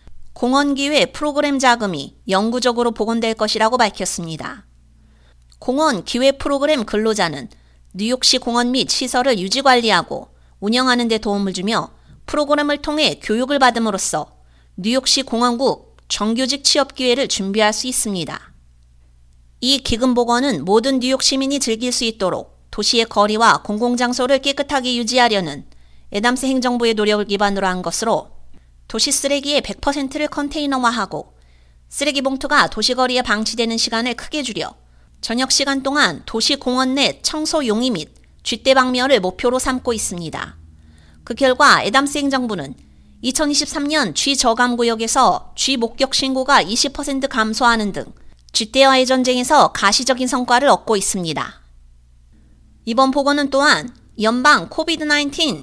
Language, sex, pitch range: Korean, female, 200-270 Hz